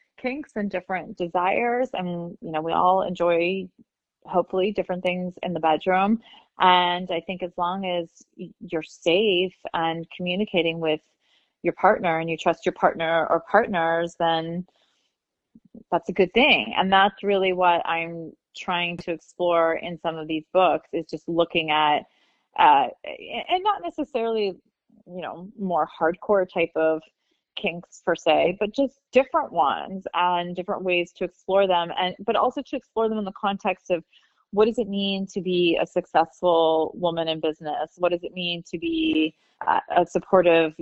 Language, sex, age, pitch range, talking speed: English, female, 30-49, 165-210 Hz, 165 wpm